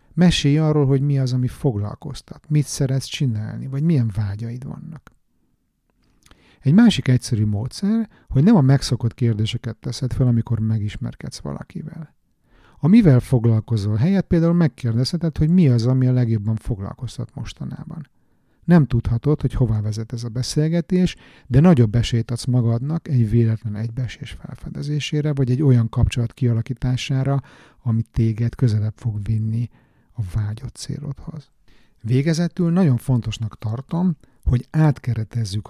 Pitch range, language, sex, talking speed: 115-150 Hz, Hungarian, male, 130 wpm